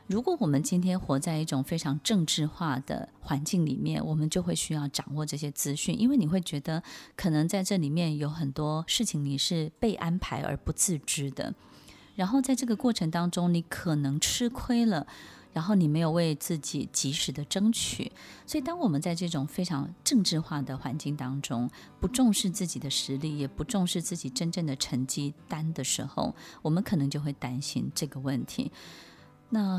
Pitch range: 145-190 Hz